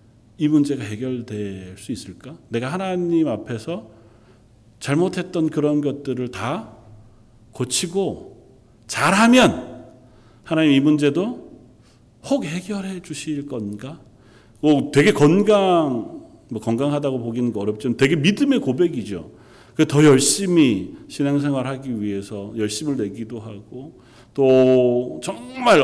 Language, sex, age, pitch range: Korean, male, 40-59, 115-155 Hz